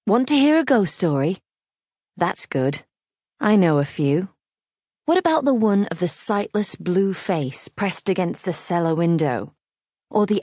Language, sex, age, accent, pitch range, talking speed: English, female, 30-49, British, 160-215 Hz, 160 wpm